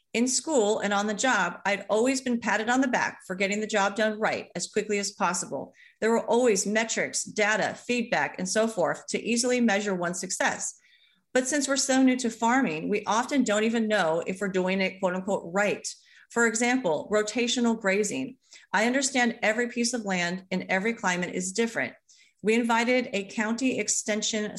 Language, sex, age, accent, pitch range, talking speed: English, female, 40-59, American, 200-245 Hz, 185 wpm